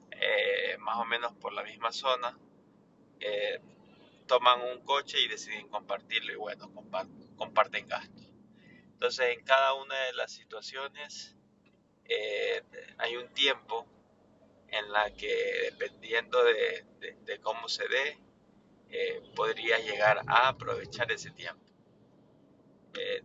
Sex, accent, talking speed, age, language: male, Mexican, 125 wpm, 30-49, Spanish